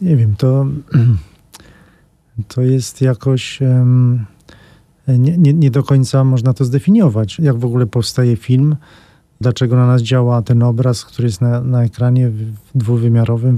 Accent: native